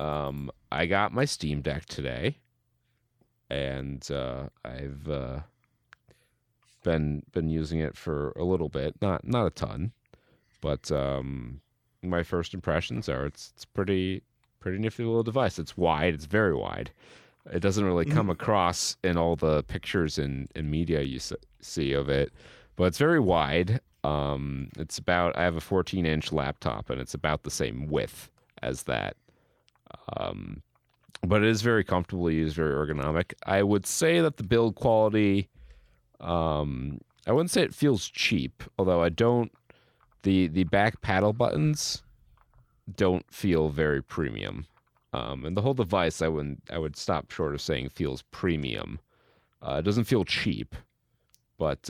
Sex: male